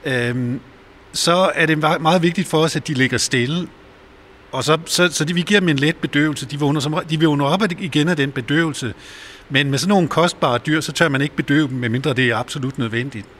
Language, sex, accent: Danish, male, native